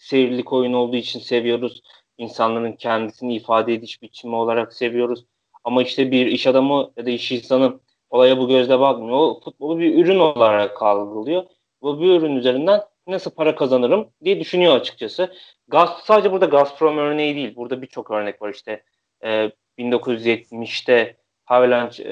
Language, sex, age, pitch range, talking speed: Turkish, male, 30-49, 120-145 Hz, 150 wpm